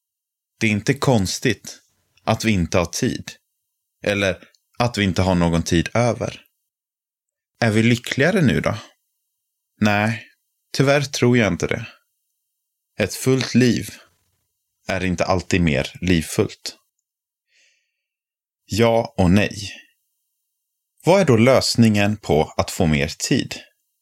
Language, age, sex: Swedish, 30-49, male